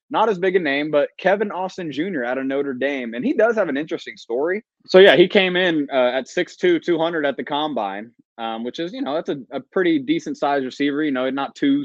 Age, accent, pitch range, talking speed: 20-39, American, 125-170 Hz, 240 wpm